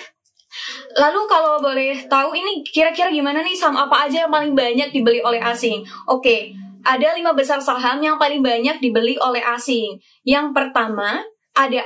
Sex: female